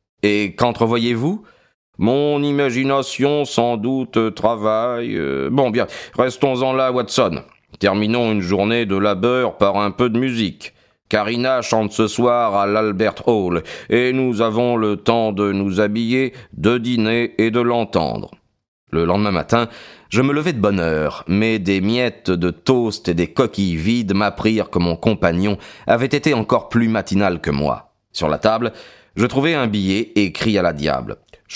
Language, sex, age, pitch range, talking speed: French, male, 40-59, 100-125 Hz, 160 wpm